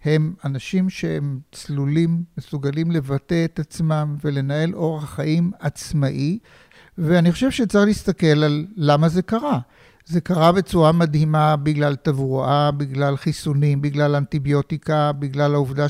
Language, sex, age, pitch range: Hebrew, male, 60-79, 145-180 Hz